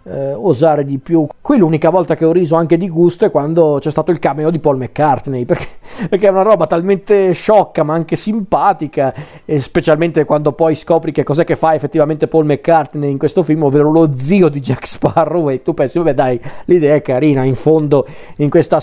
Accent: native